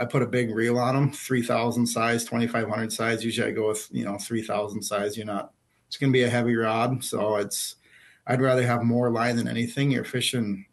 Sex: male